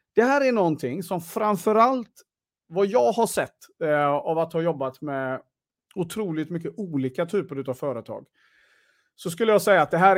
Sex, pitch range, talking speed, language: male, 140-200 Hz, 170 wpm, Swedish